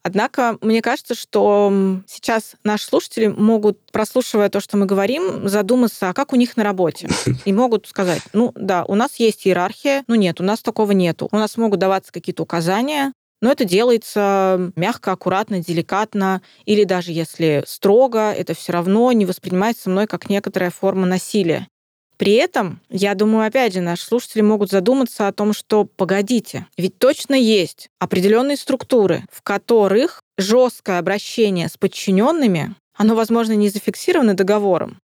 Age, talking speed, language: 20-39, 155 wpm, Russian